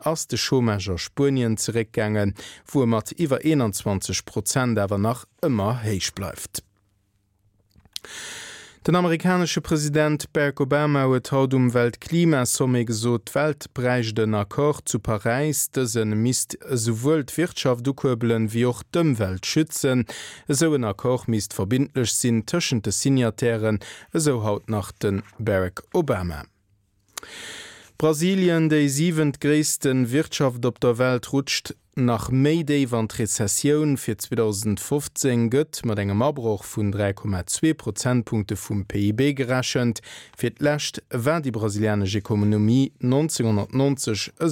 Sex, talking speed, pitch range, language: male, 115 wpm, 105-140 Hz, English